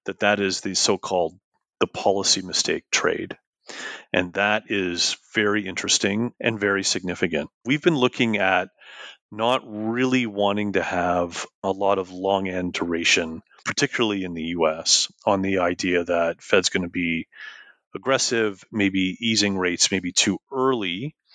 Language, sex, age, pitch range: English, male, 30-49, 90-110 Hz